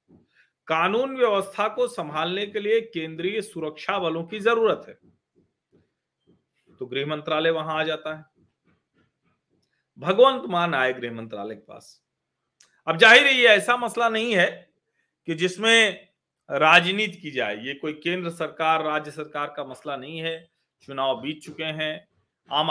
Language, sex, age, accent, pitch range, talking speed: Hindi, male, 40-59, native, 145-190 Hz, 140 wpm